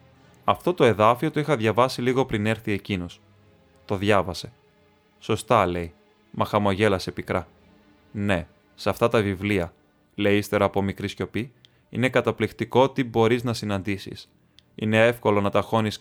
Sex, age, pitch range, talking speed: male, 20-39, 95-120 Hz, 140 wpm